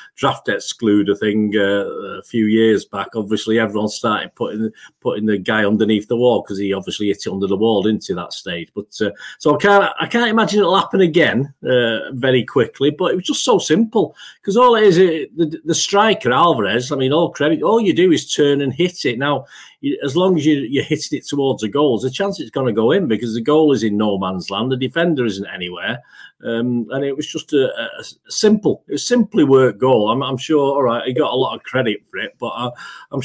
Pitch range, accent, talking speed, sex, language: 110-170 Hz, British, 230 wpm, male, English